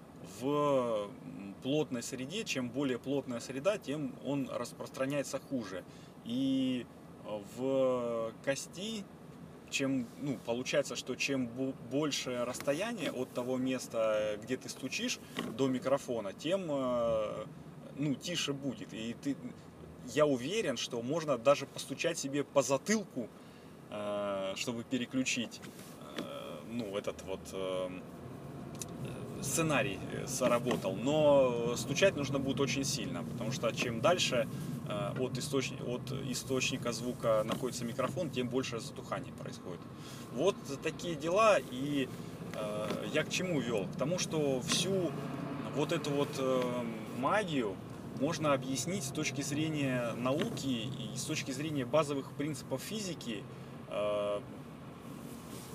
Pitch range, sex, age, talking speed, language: 125-145 Hz, male, 30-49, 110 wpm, Russian